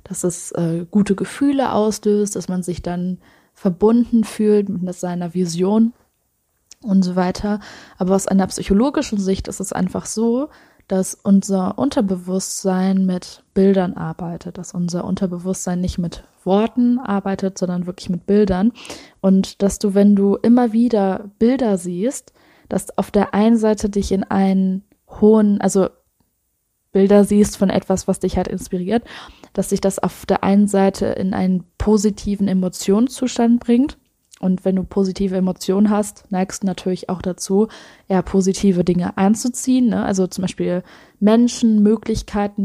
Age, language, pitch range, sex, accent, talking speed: 20-39, German, 185-210 Hz, female, German, 145 wpm